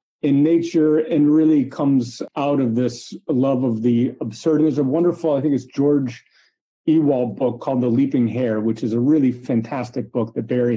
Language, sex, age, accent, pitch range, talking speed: English, male, 40-59, American, 115-140 Hz, 185 wpm